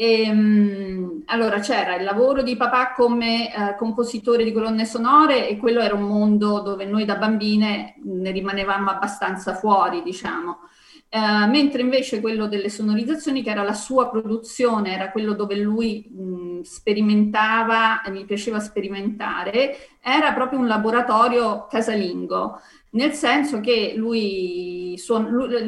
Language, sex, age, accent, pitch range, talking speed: Italian, female, 40-59, native, 205-255 Hz, 130 wpm